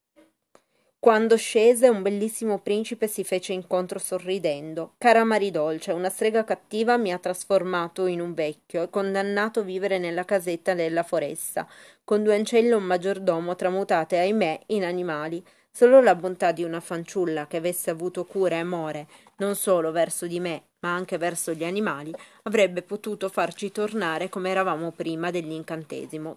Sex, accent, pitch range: female, native, 175-210 Hz